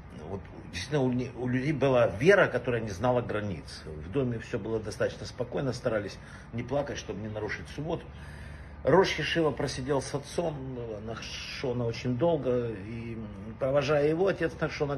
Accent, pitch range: native, 100-145 Hz